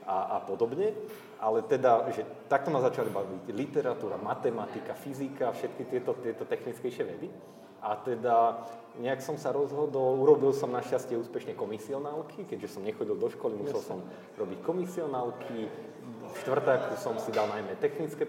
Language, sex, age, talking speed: Slovak, male, 30-49, 150 wpm